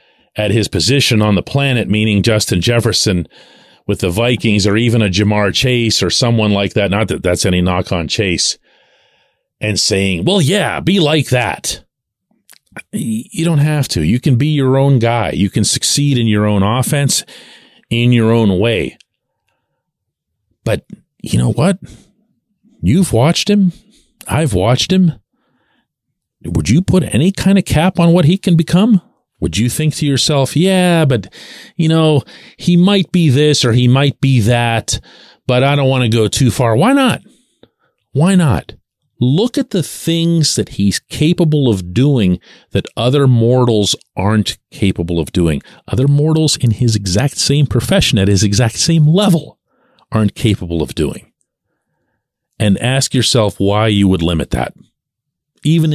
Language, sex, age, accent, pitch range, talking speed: English, male, 40-59, American, 105-155 Hz, 160 wpm